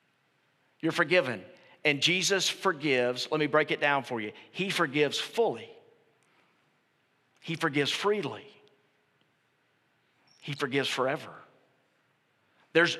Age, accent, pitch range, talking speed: 40-59, American, 140-180 Hz, 100 wpm